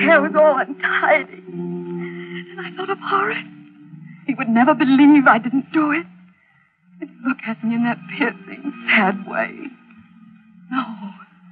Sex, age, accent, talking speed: female, 40-59, American, 145 wpm